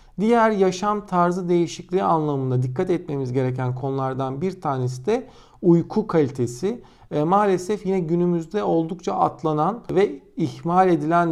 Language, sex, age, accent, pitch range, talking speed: Turkish, male, 50-69, native, 140-185 Hz, 115 wpm